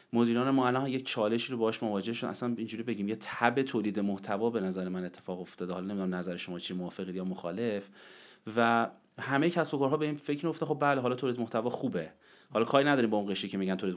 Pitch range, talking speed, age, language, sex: 95-125 Hz, 230 wpm, 30-49, Persian, male